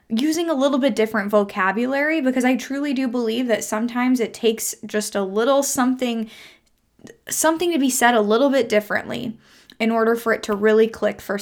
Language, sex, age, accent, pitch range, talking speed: English, female, 10-29, American, 210-255 Hz, 185 wpm